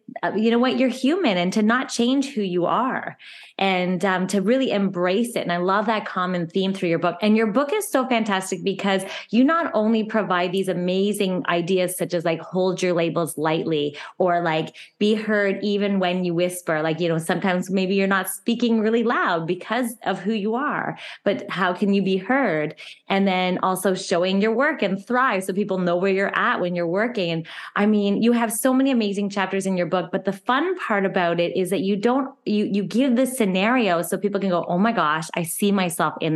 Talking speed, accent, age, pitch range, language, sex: 220 wpm, American, 20-39, 180-220 Hz, English, female